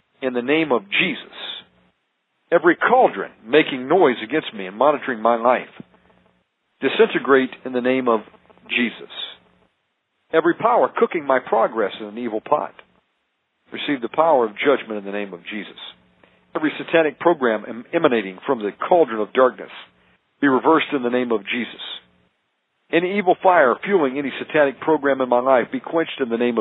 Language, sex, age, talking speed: English, male, 50-69, 160 wpm